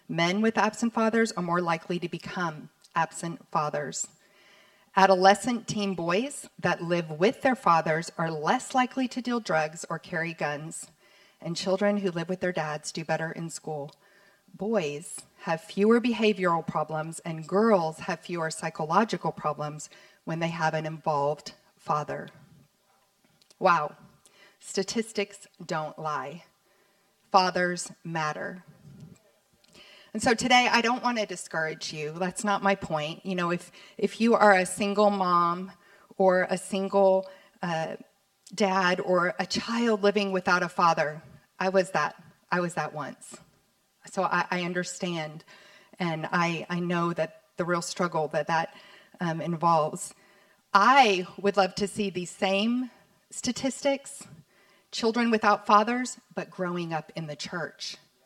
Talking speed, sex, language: 140 wpm, female, English